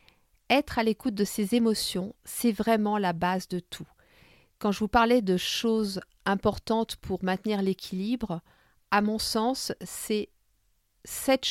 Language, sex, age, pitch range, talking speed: French, female, 50-69, 180-225 Hz, 140 wpm